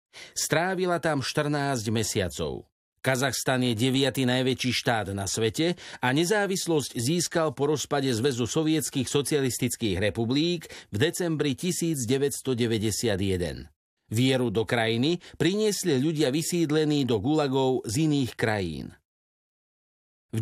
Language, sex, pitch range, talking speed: Slovak, male, 115-155 Hz, 105 wpm